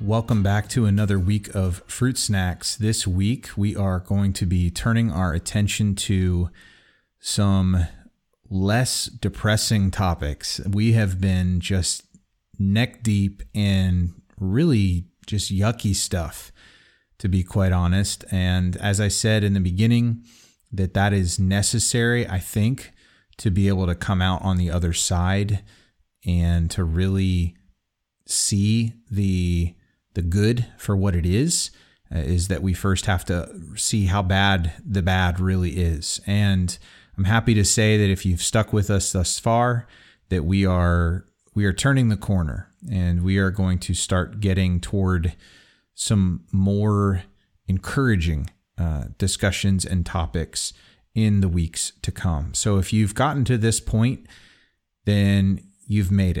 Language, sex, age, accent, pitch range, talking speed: English, male, 30-49, American, 90-105 Hz, 145 wpm